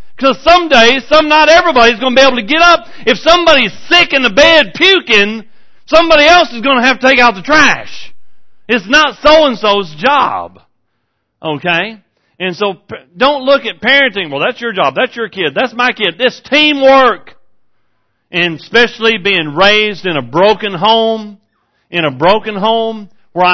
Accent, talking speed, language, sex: American, 175 wpm, English, male